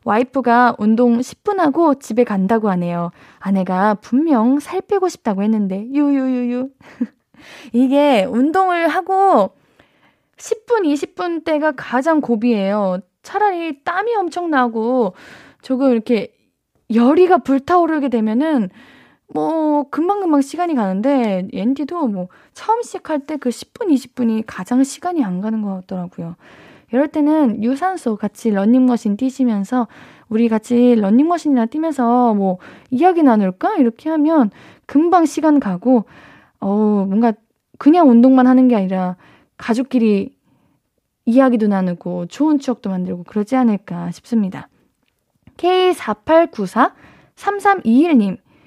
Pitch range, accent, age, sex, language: 220-305 Hz, native, 20-39, female, Korean